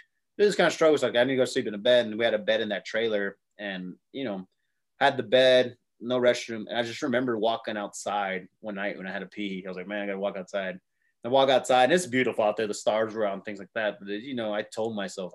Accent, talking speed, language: American, 285 wpm, English